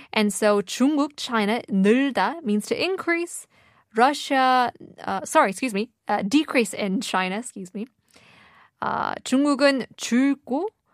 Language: Korean